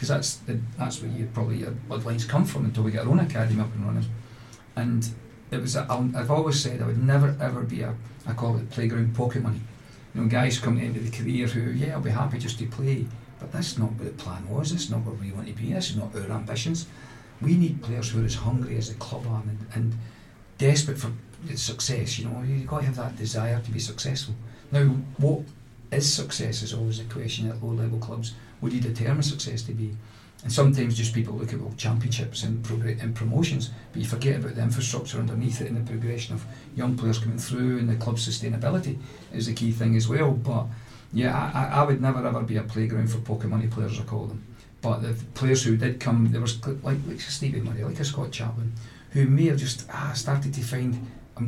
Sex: male